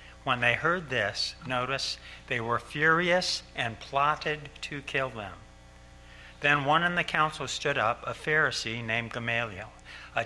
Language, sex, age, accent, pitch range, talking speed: English, male, 60-79, American, 110-150 Hz, 145 wpm